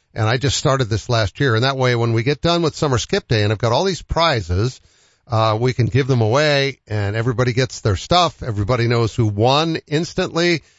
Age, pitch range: 50-69, 110-140 Hz